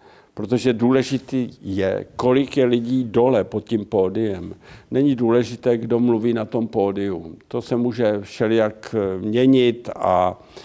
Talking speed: 130 wpm